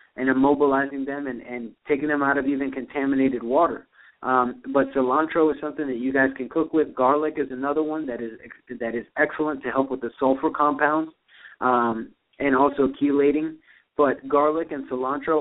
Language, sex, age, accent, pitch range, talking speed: English, male, 30-49, American, 135-150 Hz, 175 wpm